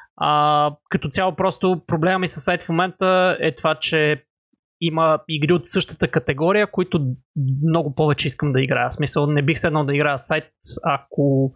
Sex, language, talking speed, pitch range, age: male, Bulgarian, 170 wpm, 145-175 Hz, 20-39